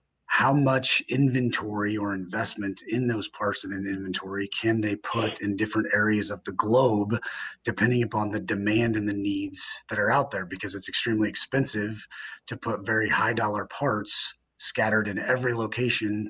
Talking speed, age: 165 wpm, 30-49